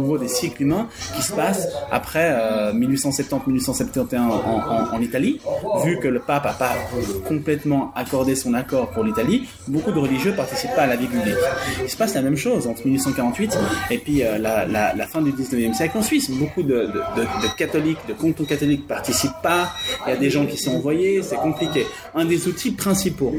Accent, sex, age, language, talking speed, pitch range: French, male, 20-39, French, 205 wpm, 130-180 Hz